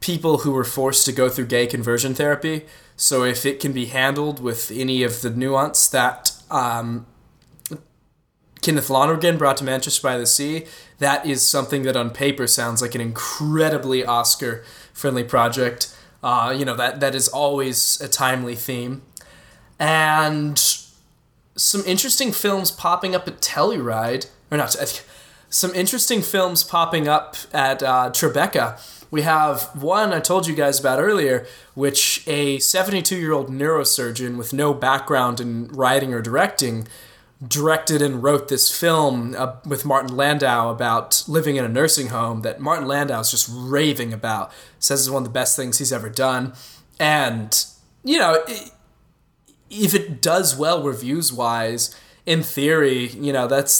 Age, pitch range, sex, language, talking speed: 20-39, 125-155 Hz, male, English, 155 wpm